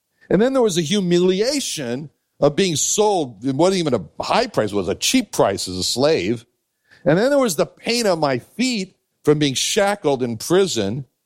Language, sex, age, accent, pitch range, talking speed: English, male, 60-79, American, 125-185 Hz, 205 wpm